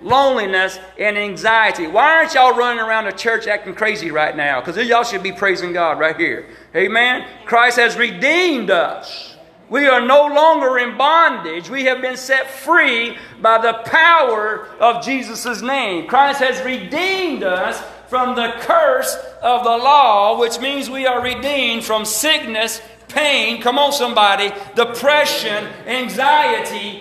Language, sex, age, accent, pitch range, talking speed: English, male, 40-59, American, 215-280 Hz, 150 wpm